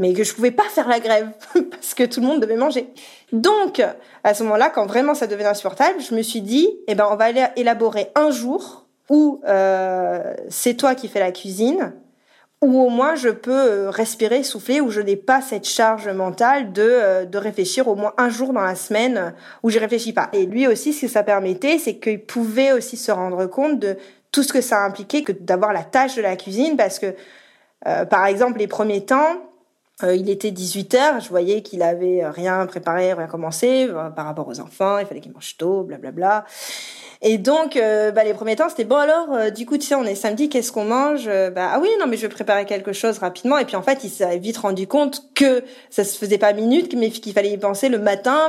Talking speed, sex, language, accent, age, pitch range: 230 wpm, female, French, French, 20-39, 200-265 Hz